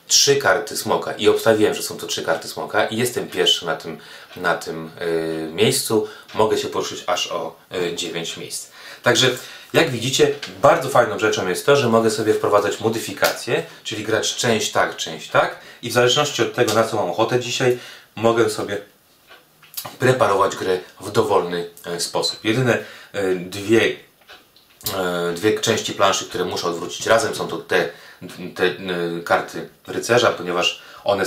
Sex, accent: male, native